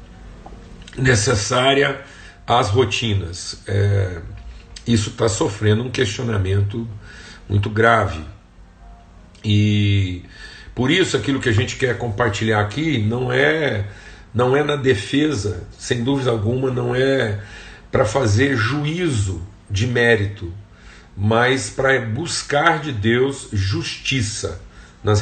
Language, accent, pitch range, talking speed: Portuguese, Brazilian, 100-135 Hz, 100 wpm